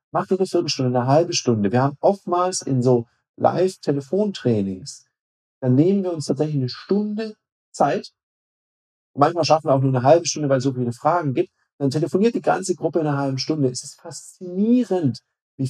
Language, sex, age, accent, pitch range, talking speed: German, male, 50-69, German, 130-175 Hz, 185 wpm